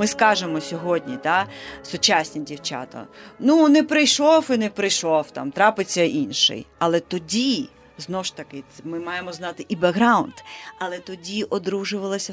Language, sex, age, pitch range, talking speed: Ukrainian, female, 30-49, 165-210 Hz, 135 wpm